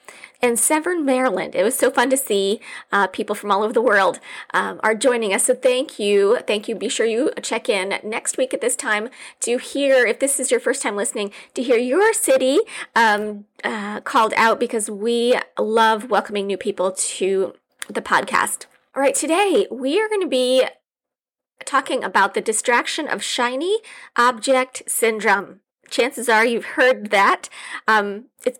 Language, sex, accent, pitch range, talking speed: English, female, American, 220-275 Hz, 175 wpm